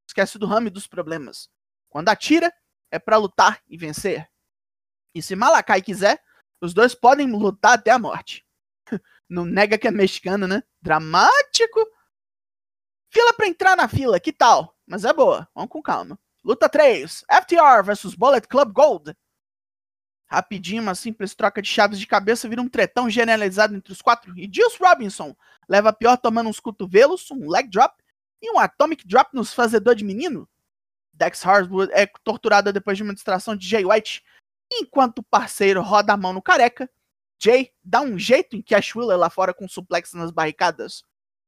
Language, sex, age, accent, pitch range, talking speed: Portuguese, male, 20-39, Brazilian, 190-255 Hz, 170 wpm